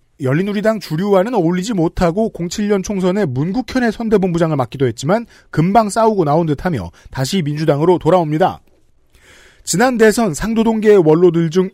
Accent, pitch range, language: native, 150-200 Hz, Korean